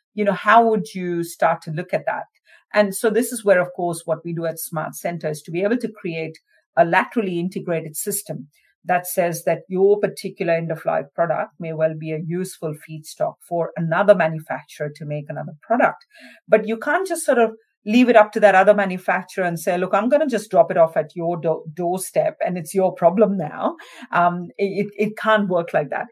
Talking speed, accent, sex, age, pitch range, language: 215 wpm, Indian, female, 50-69, 160-200 Hz, English